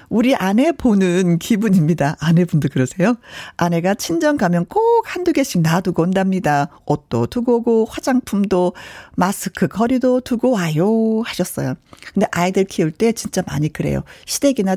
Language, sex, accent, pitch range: Korean, female, native, 170-275 Hz